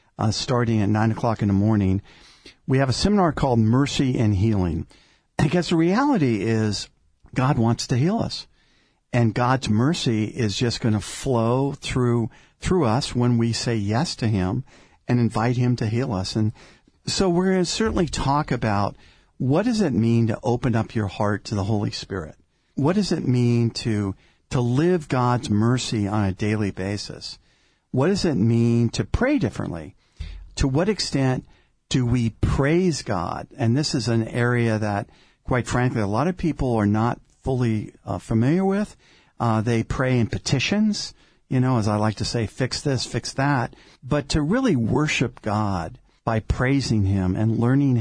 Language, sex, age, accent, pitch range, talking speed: English, male, 50-69, American, 110-135 Hz, 175 wpm